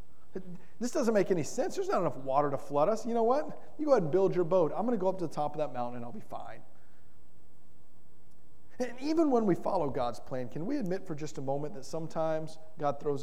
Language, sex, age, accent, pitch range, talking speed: English, male, 30-49, American, 135-200 Hz, 250 wpm